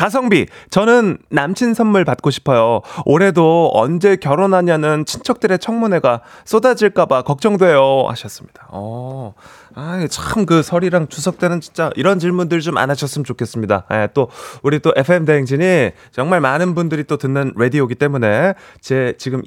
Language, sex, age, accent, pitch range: Korean, male, 30-49, native, 115-180 Hz